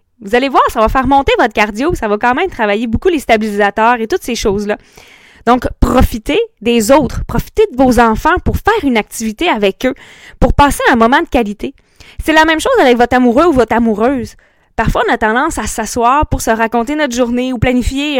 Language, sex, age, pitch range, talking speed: French, female, 20-39, 235-320 Hz, 215 wpm